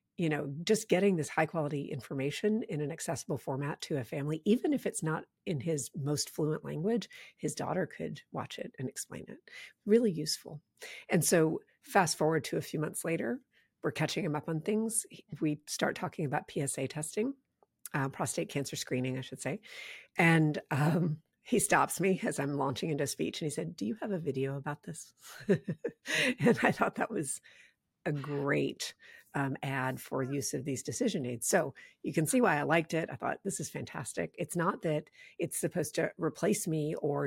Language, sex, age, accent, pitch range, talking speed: English, female, 50-69, American, 140-170 Hz, 190 wpm